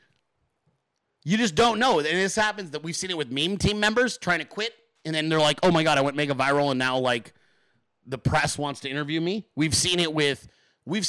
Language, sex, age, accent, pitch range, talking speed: English, male, 30-49, American, 145-195 Hz, 235 wpm